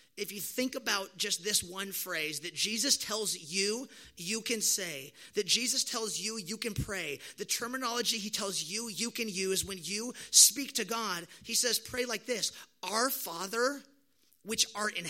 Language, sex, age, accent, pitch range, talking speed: English, male, 30-49, American, 185-230 Hz, 180 wpm